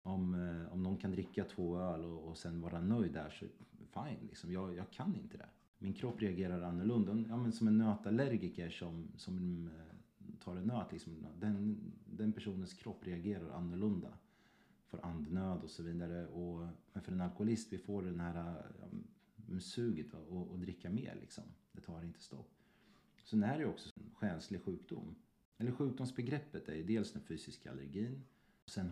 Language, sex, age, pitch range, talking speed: Swedish, male, 30-49, 85-105 Hz, 170 wpm